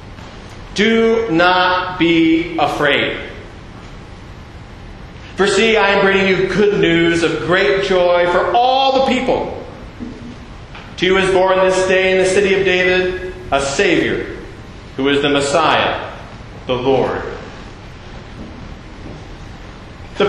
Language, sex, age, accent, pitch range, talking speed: English, male, 40-59, American, 165-230 Hz, 115 wpm